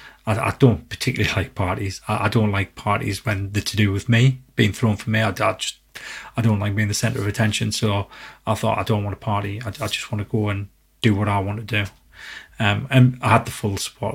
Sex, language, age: male, English, 30-49